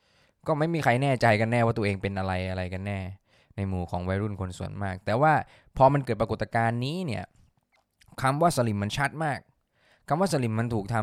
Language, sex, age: Thai, male, 20-39